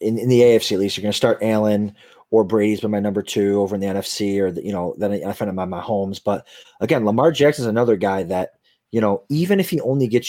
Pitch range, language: 110-145 Hz, English